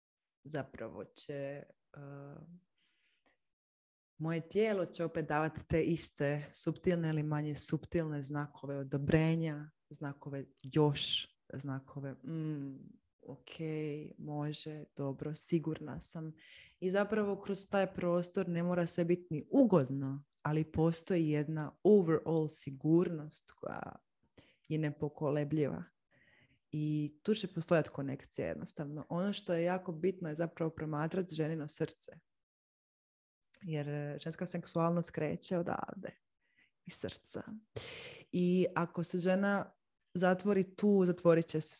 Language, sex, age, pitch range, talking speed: Croatian, female, 20-39, 150-175 Hz, 110 wpm